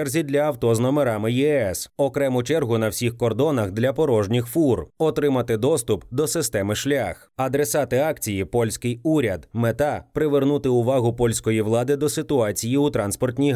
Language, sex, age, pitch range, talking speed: Ukrainian, male, 20-39, 115-145 Hz, 140 wpm